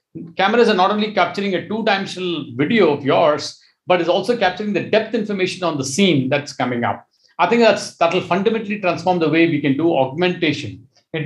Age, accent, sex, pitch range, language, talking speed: 50-69, Indian, male, 150-205 Hz, English, 195 wpm